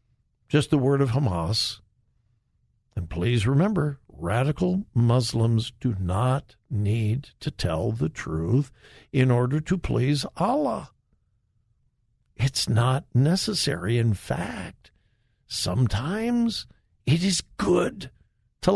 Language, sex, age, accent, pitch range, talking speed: English, male, 60-79, American, 115-165 Hz, 100 wpm